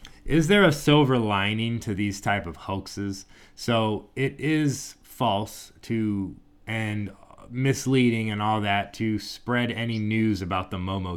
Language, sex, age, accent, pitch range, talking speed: English, male, 30-49, American, 95-125 Hz, 145 wpm